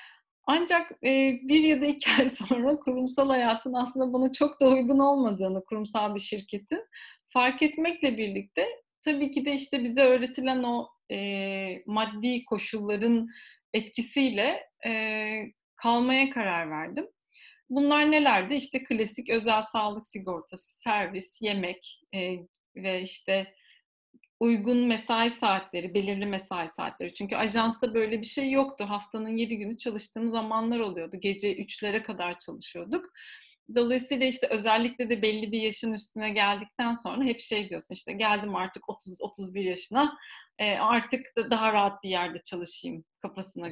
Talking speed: 125 wpm